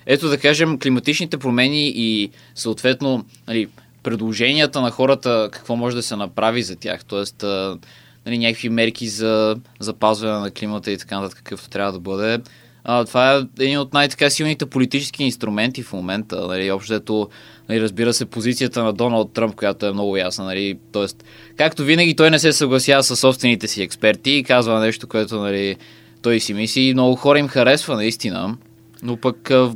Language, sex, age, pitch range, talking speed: Bulgarian, male, 20-39, 110-130 Hz, 170 wpm